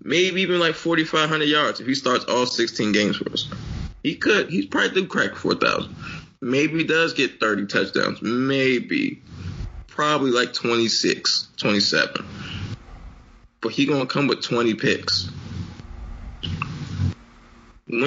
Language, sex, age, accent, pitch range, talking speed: English, male, 20-39, American, 115-150 Hz, 135 wpm